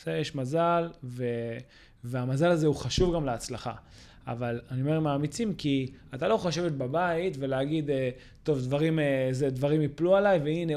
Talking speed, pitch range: 150 wpm, 125-165 Hz